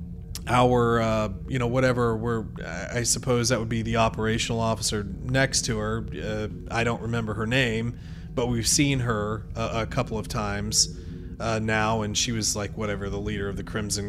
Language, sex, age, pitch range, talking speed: English, male, 30-49, 110-130 Hz, 185 wpm